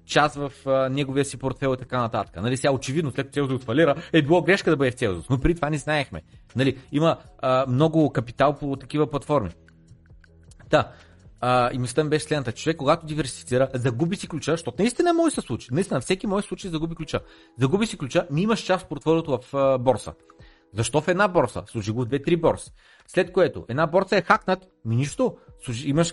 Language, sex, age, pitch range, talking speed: Bulgarian, male, 30-49, 120-165 Hz, 210 wpm